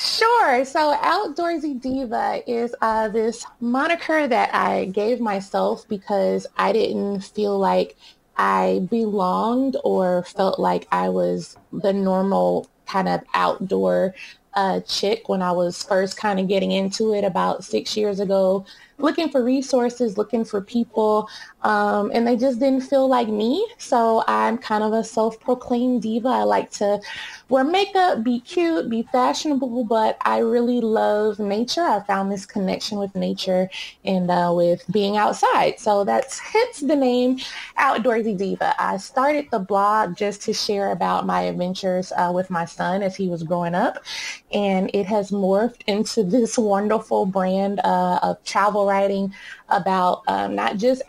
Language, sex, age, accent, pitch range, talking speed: English, female, 20-39, American, 190-245 Hz, 155 wpm